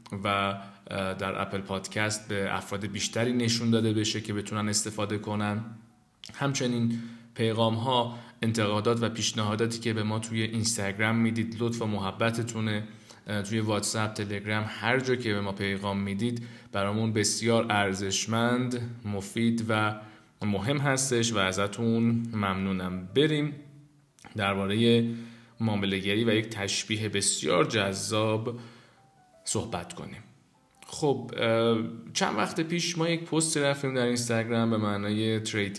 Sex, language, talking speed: male, Persian, 120 wpm